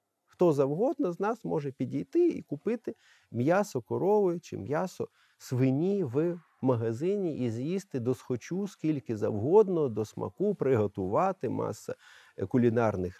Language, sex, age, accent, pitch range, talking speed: Ukrainian, male, 40-59, native, 110-180 Hz, 120 wpm